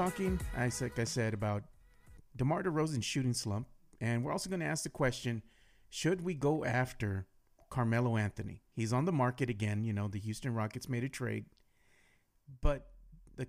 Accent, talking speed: American, 175 wpm